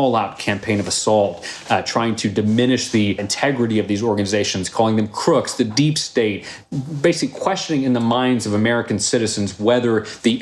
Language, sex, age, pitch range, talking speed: English, male, 30-49, 105-120 Hz, 165 wpm